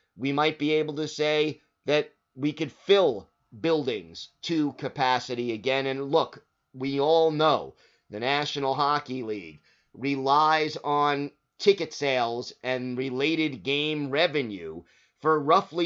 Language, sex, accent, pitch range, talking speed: English, male, American, 130-155 Hz, 125 wpm